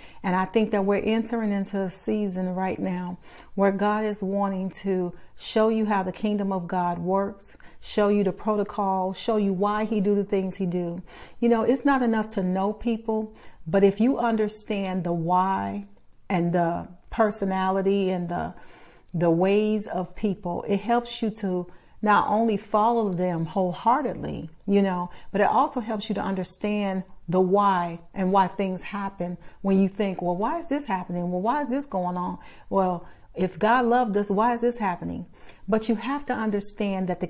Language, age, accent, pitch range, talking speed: English, 40-59, American, 185-215 Hz, 185 wpm